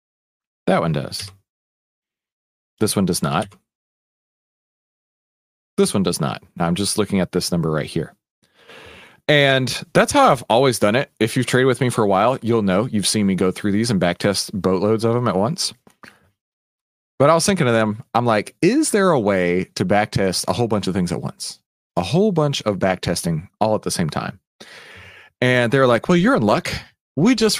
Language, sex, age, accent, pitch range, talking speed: English, male, 30-49, American, 95-140 Hz, 195 wpm